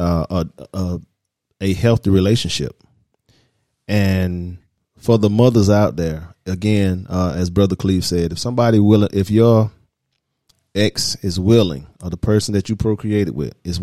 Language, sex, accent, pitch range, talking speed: English, male, American, 90-110 Hz, 150 wpm